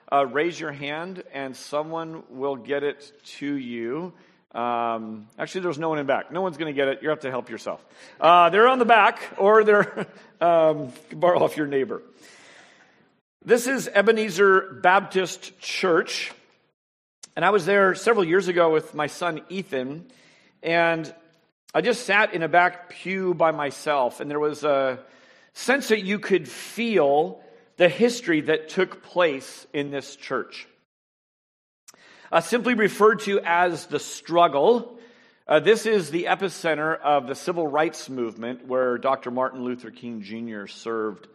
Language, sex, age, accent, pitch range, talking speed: English, male, 50-69, American, 145-195 Hz, 160 wpm